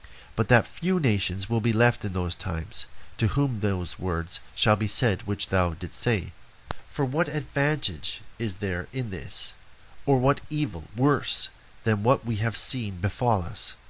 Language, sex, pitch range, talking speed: English, male, 100-130 Hz, 170 wpm